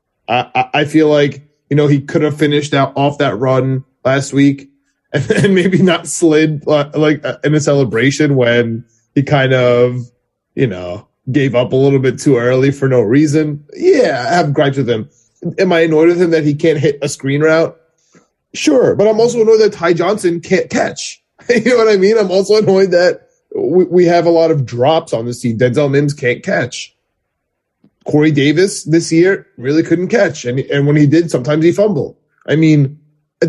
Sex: male